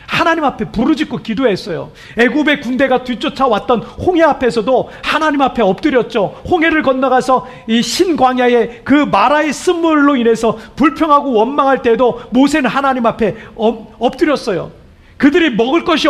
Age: 40-59